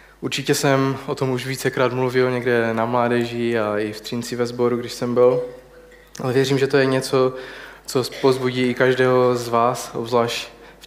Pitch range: 120-135 Hz